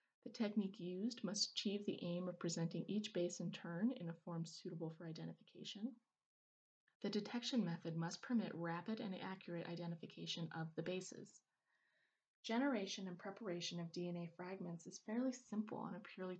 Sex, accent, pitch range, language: female, American, 180-235 Hz, English